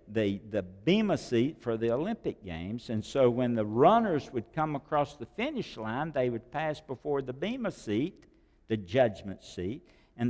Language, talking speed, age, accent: English, 175 wpm, 60-79, American